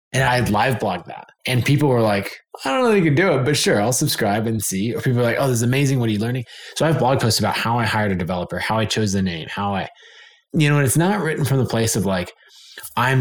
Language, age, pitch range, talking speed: English, 20-39, 105-135 Hz, 300 wpm